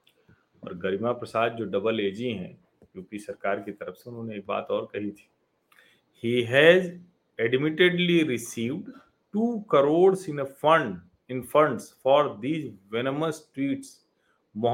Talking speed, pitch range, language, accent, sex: 55 wpm, 105-155 Hz, Hindi, native, male